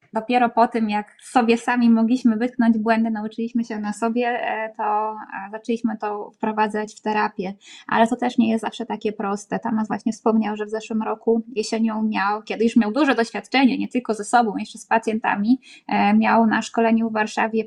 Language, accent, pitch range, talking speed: Polish, native, 210-240 Hz, 180 wpm